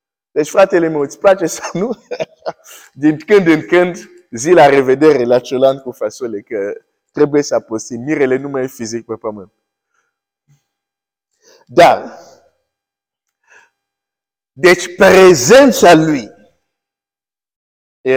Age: 50-69